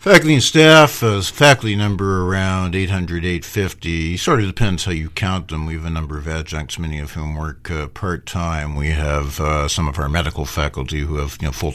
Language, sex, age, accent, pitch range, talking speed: English, male, 60-79, American, 75-95 Hz, 225 wpm